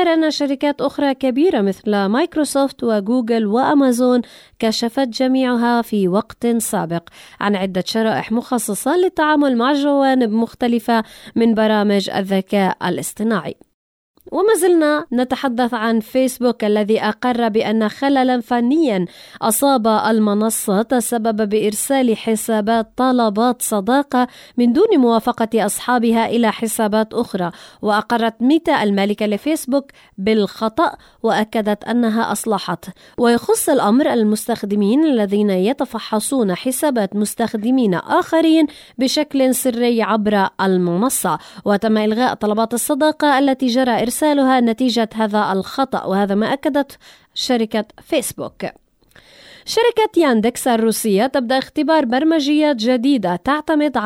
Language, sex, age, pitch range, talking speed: Arabic, female, 20-39, 215-270 Hz, 100 wpm